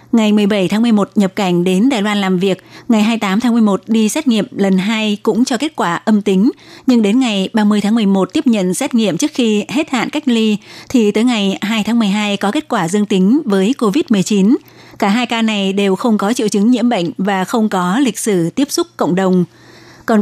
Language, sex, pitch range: Vietnamese, female, 195-240 Hz